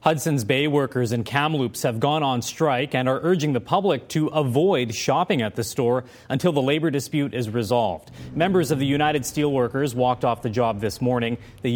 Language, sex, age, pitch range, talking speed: English, male, 30-49, 115-145 Hz, 195 wpm